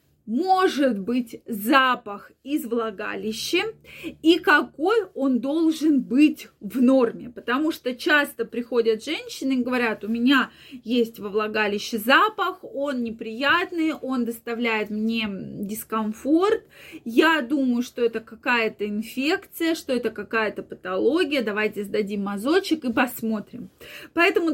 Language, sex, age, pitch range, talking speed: Russian, female, 20-39, 225-300 Hz, 115 wpm